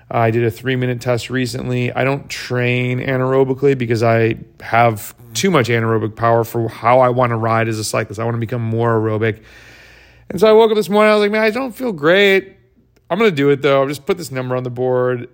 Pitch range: 115-135 Hz